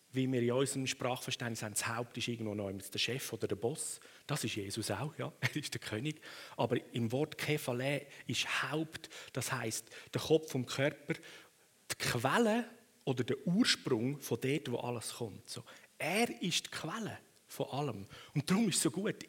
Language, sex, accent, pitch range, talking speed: German, male, Austrian, 125-180 Hz, 185 wpm